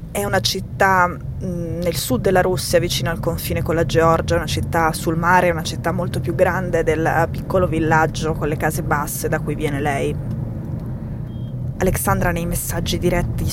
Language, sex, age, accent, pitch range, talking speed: Italian, female, 20-39, native, 160-180 Hz, 165 wpm